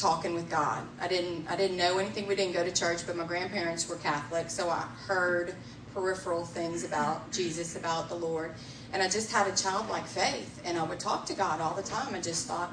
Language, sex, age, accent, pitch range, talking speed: English, female, 30-49, American, 170-210 Hz, 220 wpm